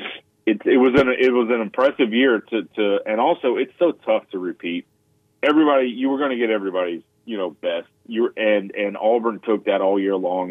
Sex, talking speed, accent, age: male, 210 wpm, American, 40-59